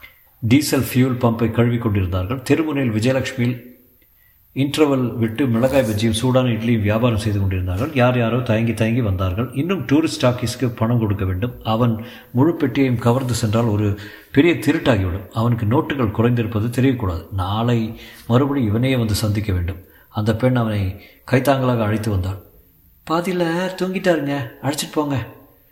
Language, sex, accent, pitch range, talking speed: Tamil, male, native, 100-125 Hz, 130 wpm